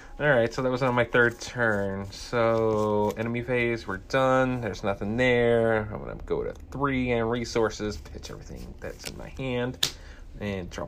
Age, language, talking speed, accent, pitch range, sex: 30-49, English, 175 wpm, American, 85-120 Hz, male